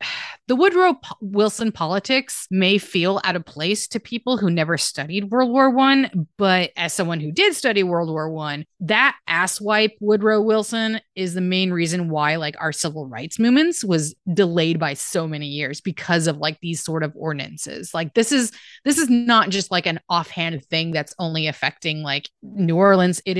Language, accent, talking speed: English, American, 180 wpm